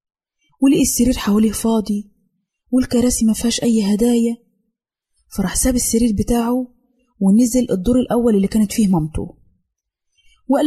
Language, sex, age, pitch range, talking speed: Arabic, female, 20-39, 185-245 Hz, 110 wpm